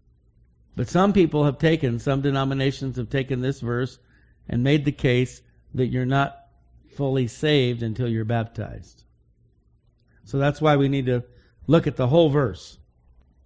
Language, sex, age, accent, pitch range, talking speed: English, male, 50-69, American, 105-150 Hz, 150 wpm